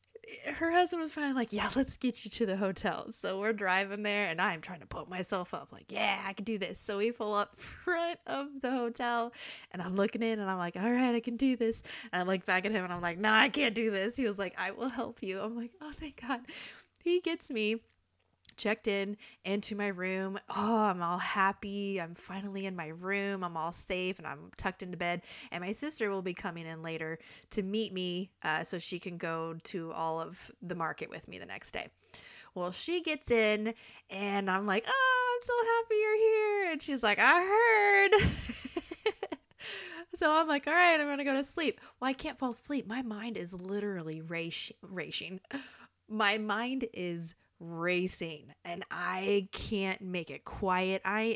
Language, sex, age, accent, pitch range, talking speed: English, female, 20-39, American, 180-240 Hz, 205 wpm